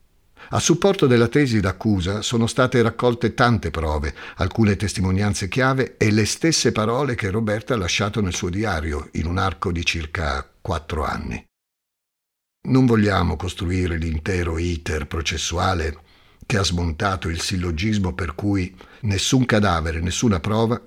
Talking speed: 140 wpm